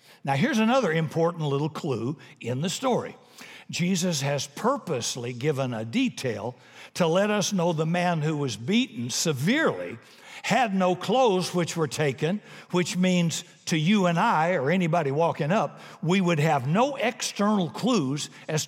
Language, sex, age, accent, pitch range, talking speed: English, male, 60-79, American, 155-215 Hz, 155 wpm